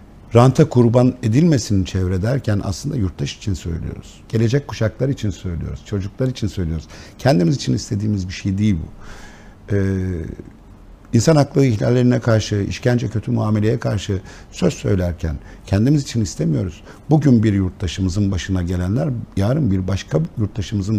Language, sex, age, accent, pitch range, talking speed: Turkish, male, 50-69, native, 95-115 Hz, 130 wpm